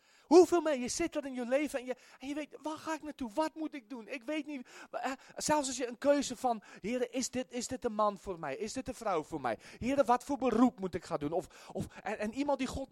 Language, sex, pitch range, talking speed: Dutch, male, 225-280 Hz, 290 wpm